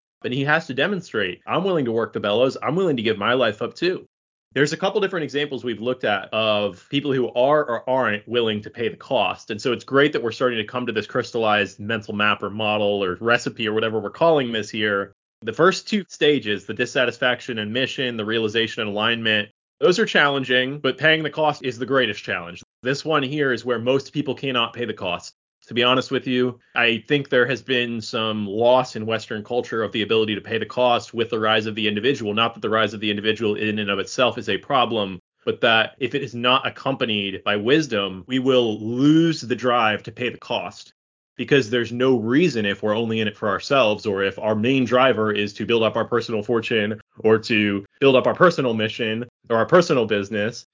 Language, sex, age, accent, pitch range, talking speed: English, male, 30-49, American, 110-135 Hz, 225 wpm